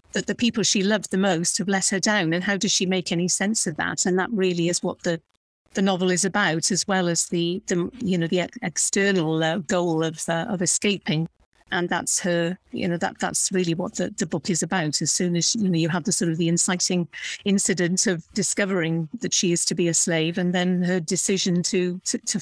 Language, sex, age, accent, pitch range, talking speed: English, female, 50-69, British, 175-200 Hz, 235 wpm